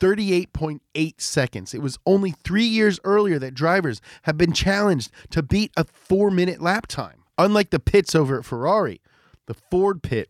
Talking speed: 165 wpm